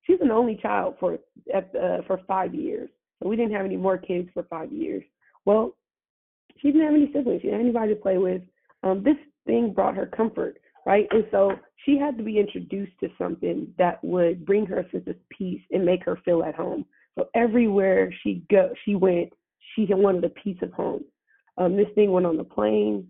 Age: 30-49